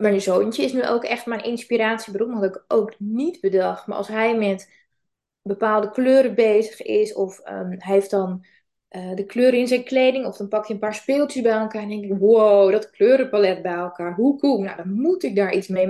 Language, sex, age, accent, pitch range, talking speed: Dutch, female, 20-39, Dutch, 195-235 Hz, 220 wpm